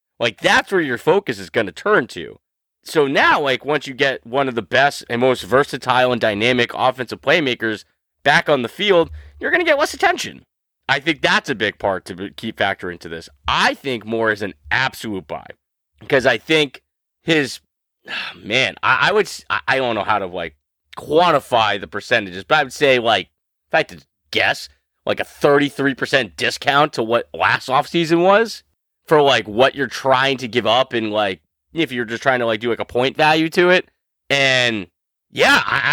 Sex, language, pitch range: male, English, 110-155 Hz